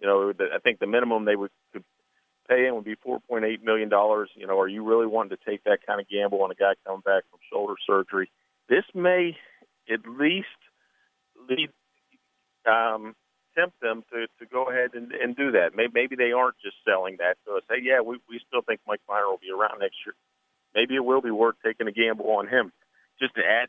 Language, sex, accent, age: English, male, American, 40-59